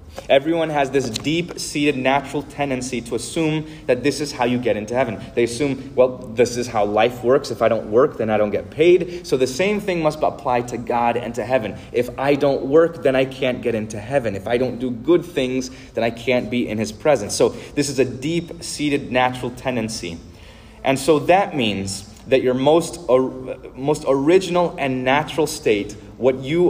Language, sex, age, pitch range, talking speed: English, male, 30-49, 115-145 Hz, 200 wpm